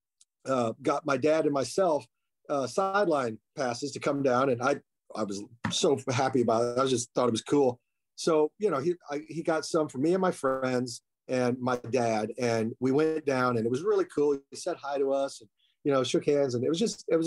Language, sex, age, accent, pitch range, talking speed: English, male, 40-59, American, 125-165 Hz, 235 wpm